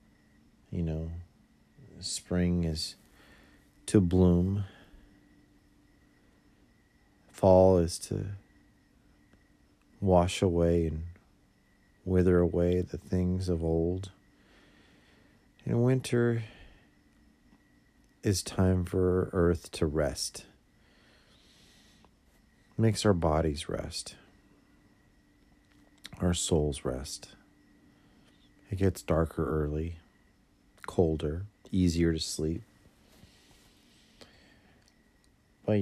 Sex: male